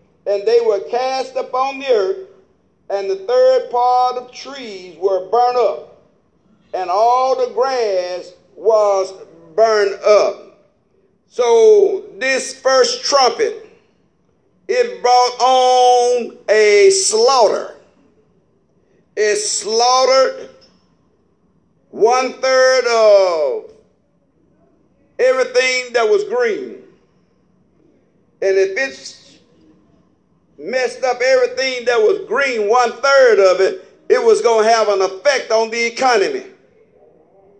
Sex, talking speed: male, 105 wpm